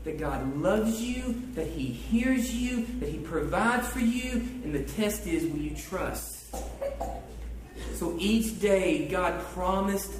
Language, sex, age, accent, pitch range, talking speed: English, male, 40-59, American, 145-225 Hz, 145 wpm